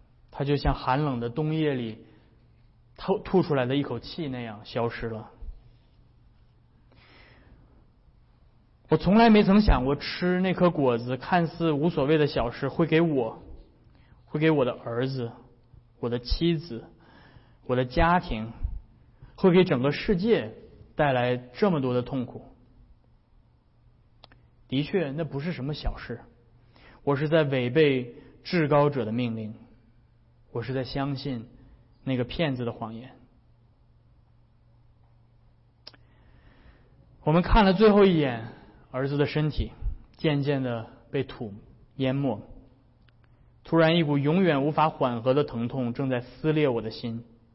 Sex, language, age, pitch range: male, Chinese, 20-39, 115-150 Hz